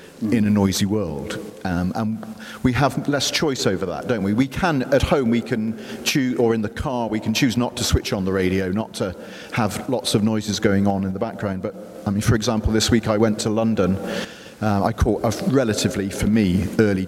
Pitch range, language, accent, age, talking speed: 100-125 Hz, English, British, 40-59, 225 wpm